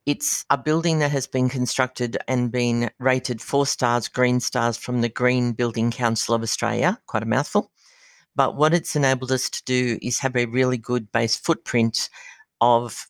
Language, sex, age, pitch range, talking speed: English, female, 60-79, 115-130 Hz, 180 wpm